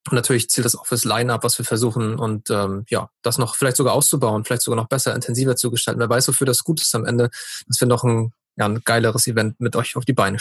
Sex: male